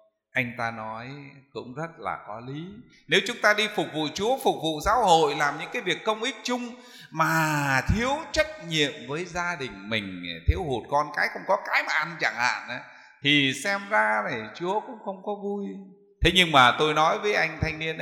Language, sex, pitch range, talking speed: Vietnamese, male, 140-210 Hz, 210 wpm